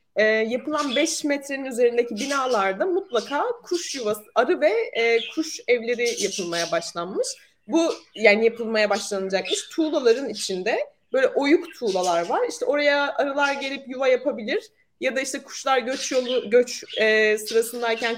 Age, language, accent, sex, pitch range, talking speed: 30-49, Turkish, native, female, 215-310 Hz, 135 wpm